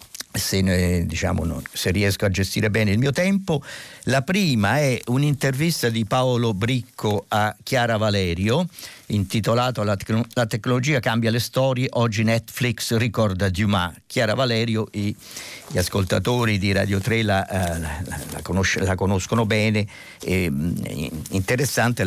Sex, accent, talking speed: male, native, 135 wpm